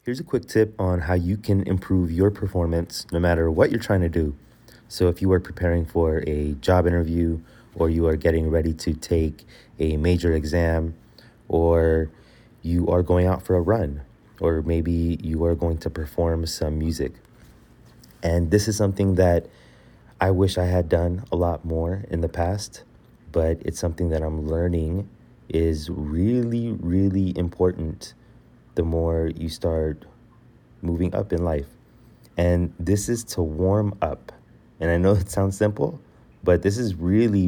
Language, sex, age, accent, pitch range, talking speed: English, male, 30-49, American, 80-95 Hz, 165 wpm